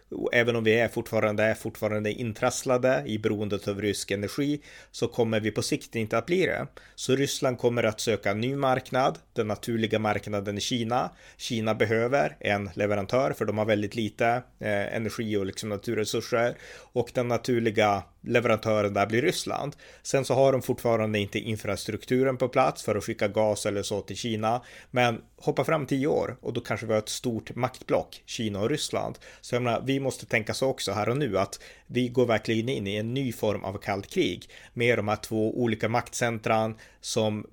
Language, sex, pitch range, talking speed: Swedish, male, 105-120 Hz, 190 wpm